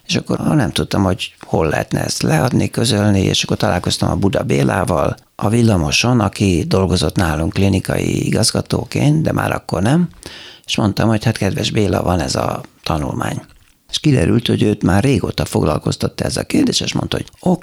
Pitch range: 95-115 Hz